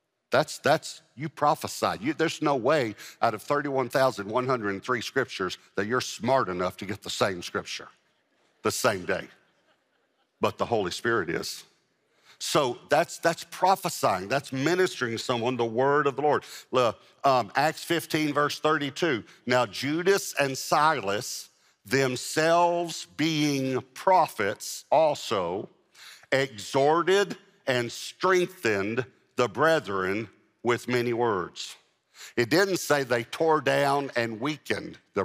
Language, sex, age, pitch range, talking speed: English, male, 60-79, 120-150 Hz, 125 wpm